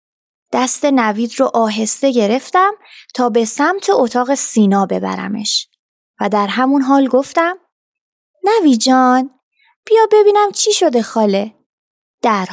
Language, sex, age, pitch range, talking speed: Persian, female, 20-39, 220-320 Hz, 110 wpm